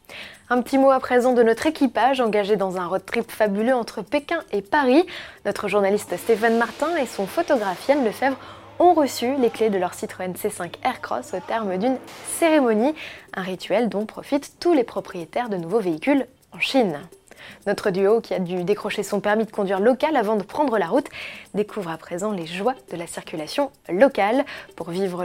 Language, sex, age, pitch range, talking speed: French, female, 20-39, 190-260 Hz, 185 wpm